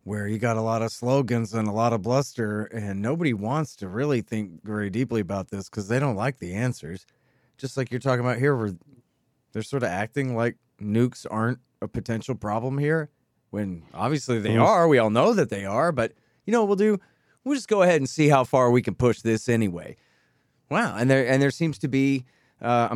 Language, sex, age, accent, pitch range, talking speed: English, male, 30-49, American, 110-145 Hz, 220 wpm